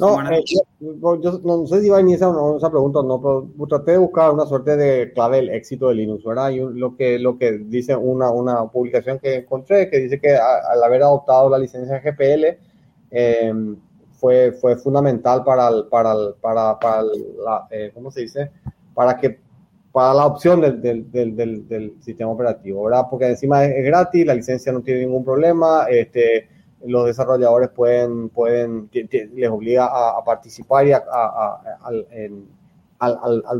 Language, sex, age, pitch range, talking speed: Spanish, male, 30-49, 120-155 Hz, 170 wpm